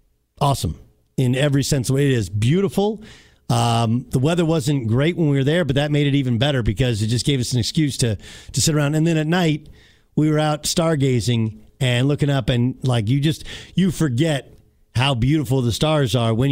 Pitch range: 130-175 Hz